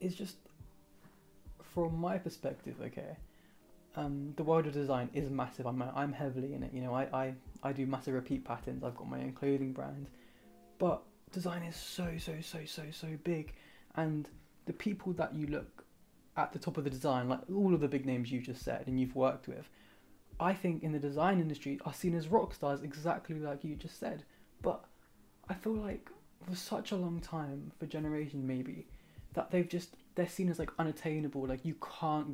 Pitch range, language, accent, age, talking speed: 135-175 Hz, English, British, 20-39, 195 wpm